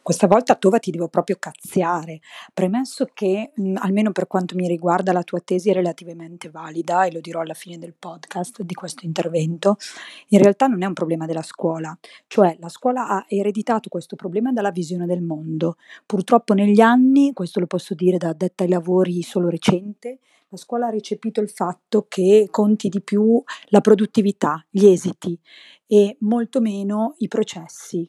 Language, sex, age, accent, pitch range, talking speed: Italian, female, 30-49, native, 180-215 Hz, 175 wpm